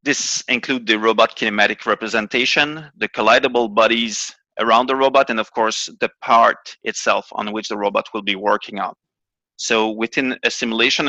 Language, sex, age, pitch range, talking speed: English, male, 30-49, 110-130 Hz, 160 wpm